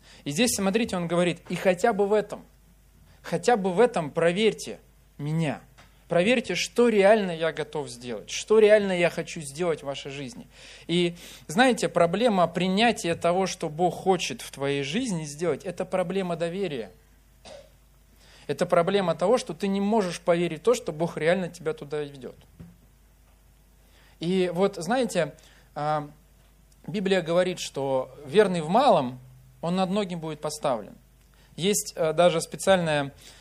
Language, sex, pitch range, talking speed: Russian, male, 145-185 Hz, 140 wpm